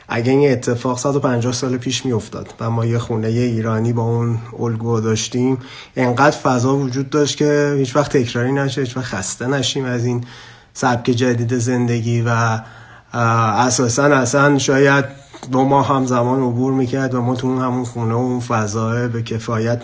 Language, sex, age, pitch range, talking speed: Persian, male, 30-49, 115-140 Hz, 165 wpm